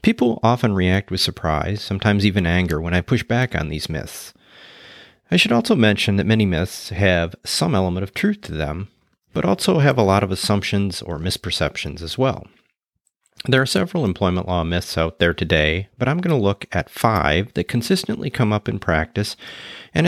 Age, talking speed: 40-59, 190 wpm